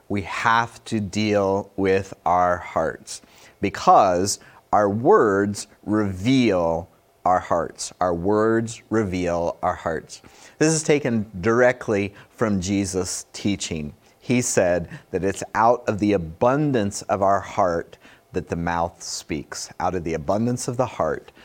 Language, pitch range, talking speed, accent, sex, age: English, 90-115 Hz, 130 wpm, American, male, 30-49